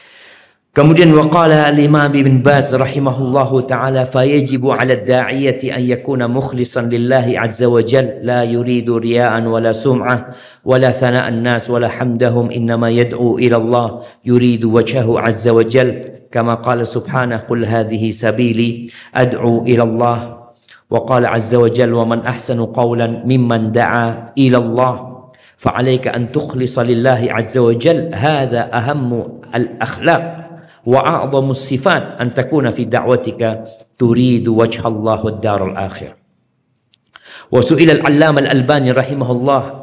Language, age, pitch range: Indonesian, 50-69, 115-130 Hz